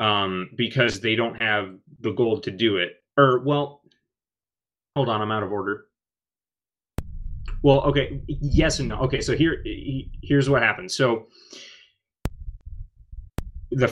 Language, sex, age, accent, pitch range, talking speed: English, male, 30-49, American, 105-130 Hz, 135 wpm